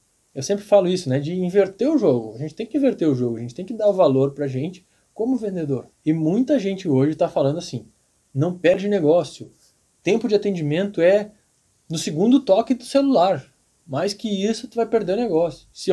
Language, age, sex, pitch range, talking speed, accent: Portuguese, 20-39, male, 140-200 Hz, 205 wpm, Brazilian